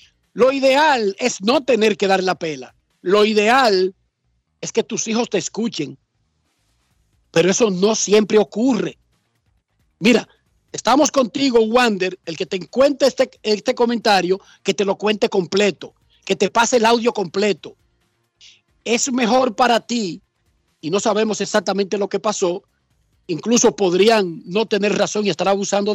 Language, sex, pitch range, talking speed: Spanish, male, 185-230 Hz, 145 wpm